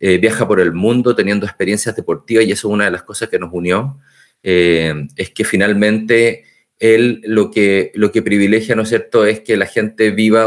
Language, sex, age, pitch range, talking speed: Spanish, male, 30-49, 95-120 Hz, 205 wpm